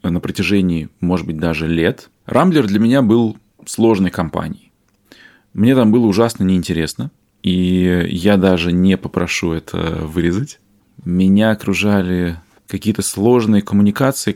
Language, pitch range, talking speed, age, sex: Russian, 90-105 Hz, 120 wpm, 20-39, male